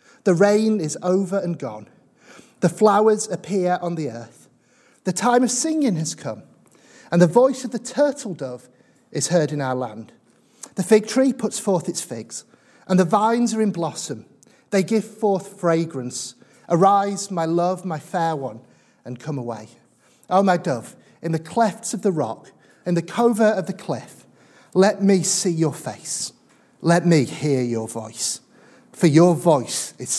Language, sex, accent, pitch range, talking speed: English, male, British, 150-215 Hz, 170 wpm